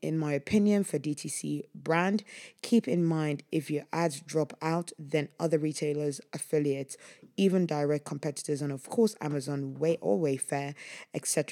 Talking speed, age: 150 wpm, 20-39